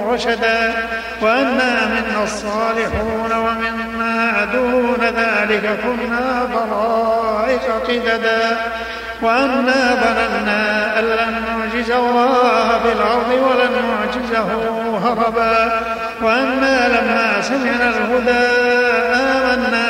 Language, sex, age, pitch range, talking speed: Arabic, male, 50-69, 225-245 Hz, 75 wpm